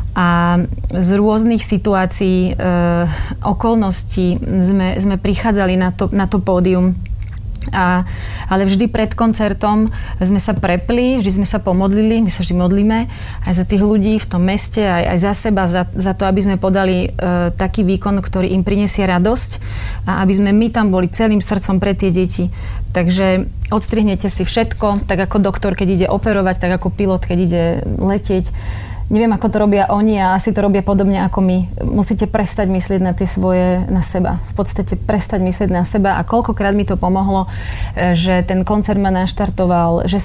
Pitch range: 180-205 Hz